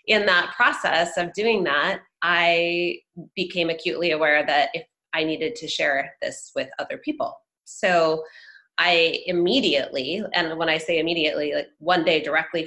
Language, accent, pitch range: English, American, 155-195 Hz